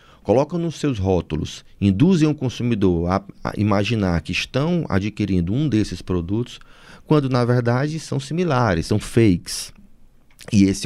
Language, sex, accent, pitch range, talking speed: Portuguese, male, Brazilian, 95-125 Hz, 140 wpm